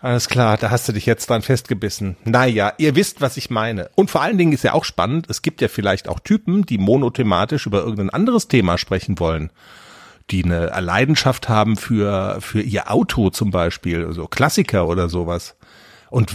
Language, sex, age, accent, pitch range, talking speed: German, male, 40-59, German, 100-150 Hz, 190 wpm